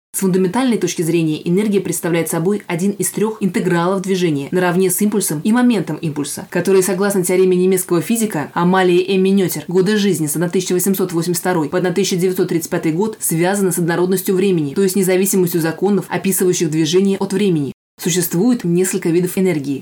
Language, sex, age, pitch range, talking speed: Russian, female, 20-39, 170-195 Hz, 145 wpm